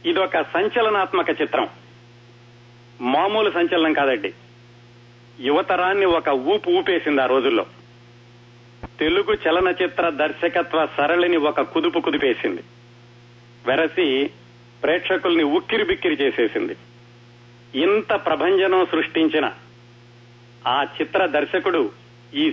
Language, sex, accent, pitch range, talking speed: Telugu, male, native, 120-180 Hz, 80 wpm